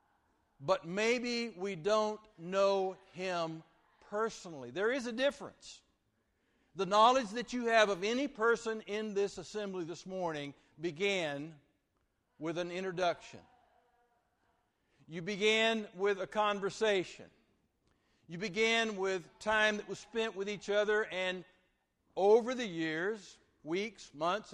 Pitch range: 170-215 Hz